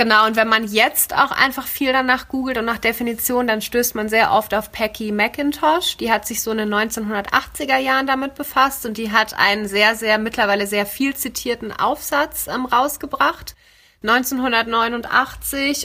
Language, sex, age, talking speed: German, female, 30-49, 170 wpm